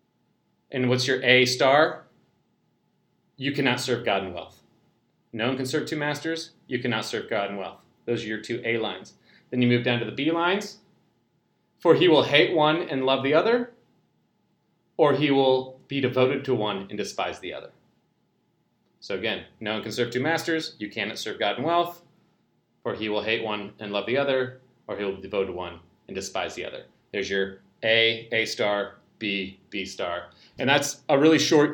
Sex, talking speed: male, 195 wpm